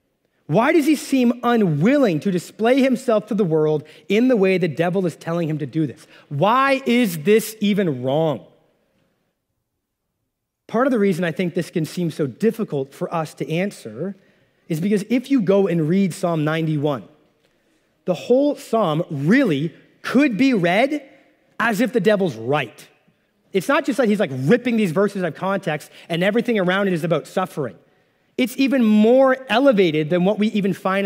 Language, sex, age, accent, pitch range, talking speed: English, male, 30-49, American, 165-225 Hz, 175 wpm